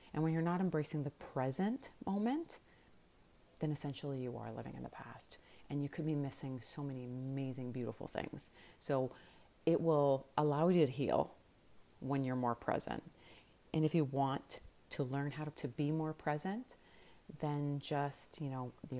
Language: English